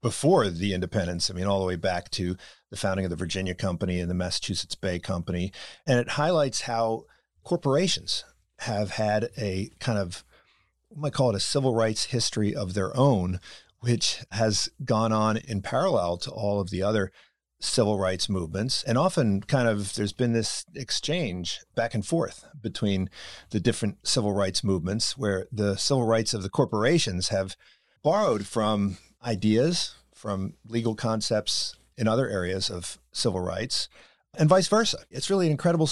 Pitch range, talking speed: 100-130 Hz, 165 wpm